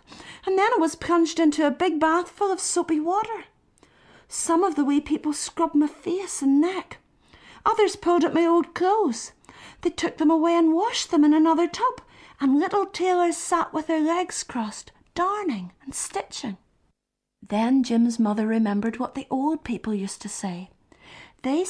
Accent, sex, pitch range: British, female, 230-335 Hz